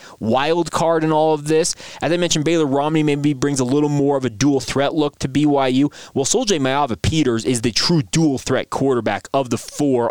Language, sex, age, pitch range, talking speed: English, male, 20-39, 120-150 Hz, 195 wpm